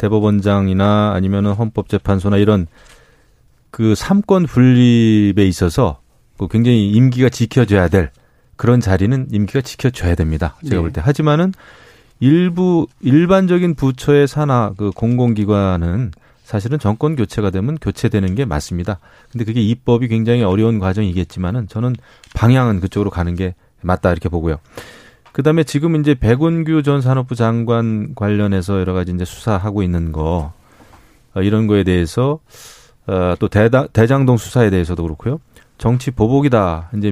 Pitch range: 95-130 Hz